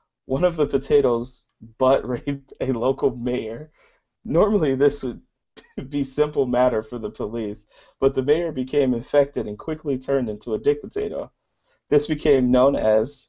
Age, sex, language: 20-39, male, English